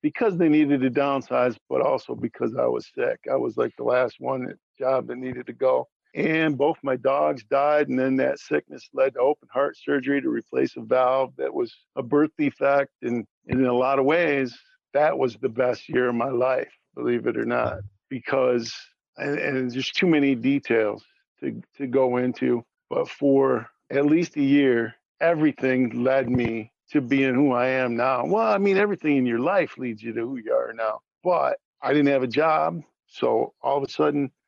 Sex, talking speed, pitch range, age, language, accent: male, 200 wpm, 125-165 Hz, 50-69, English, American